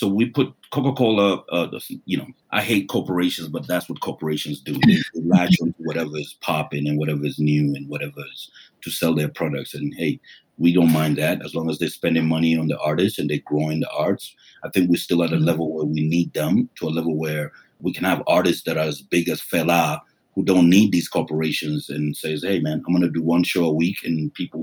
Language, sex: English, male